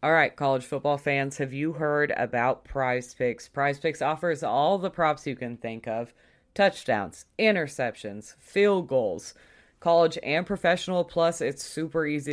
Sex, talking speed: female, 150 wpm